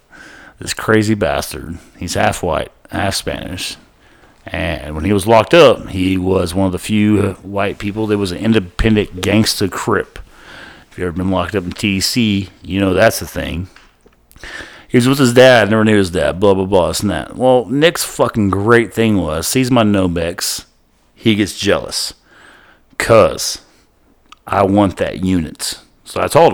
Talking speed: 170 wpm